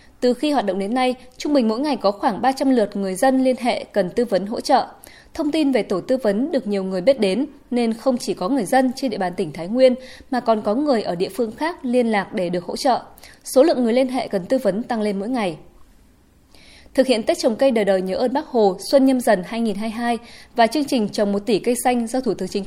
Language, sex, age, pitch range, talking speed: Vietnamese, female, 20-39, 200-265 Hz, 260 wpm